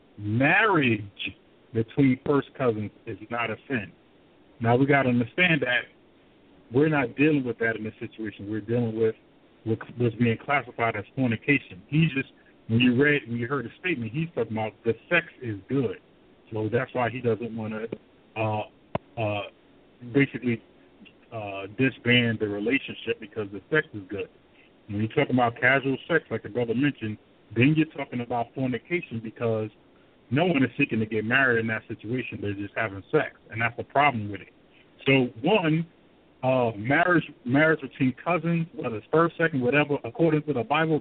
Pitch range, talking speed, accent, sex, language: 110-140 Hz, 170 wpm, American, male, English